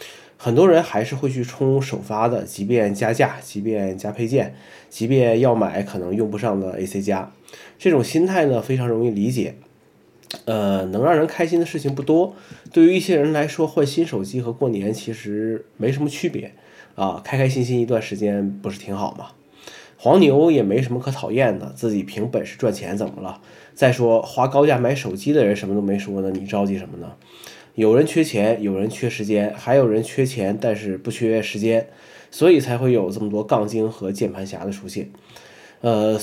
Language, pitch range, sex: Chinese, 105-140 Hz, male